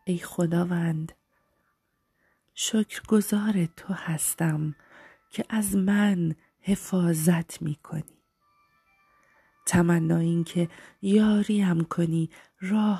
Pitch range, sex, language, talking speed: 165-195 Hz, female, Persian, 85 wpm